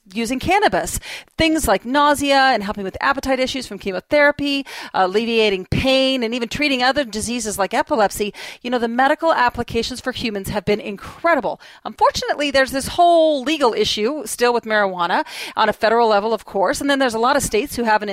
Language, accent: English, American